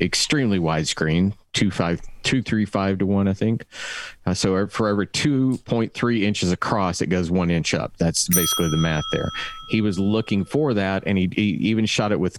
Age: 40-59